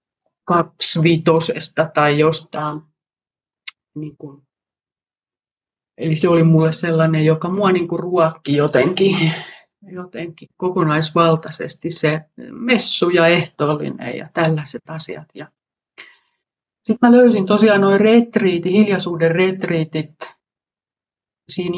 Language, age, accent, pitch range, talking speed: Finnish, 30-49, native, 155-185 Hz, 90 wpm